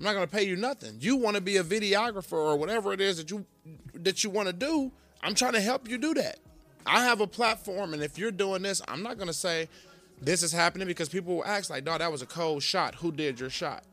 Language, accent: English, American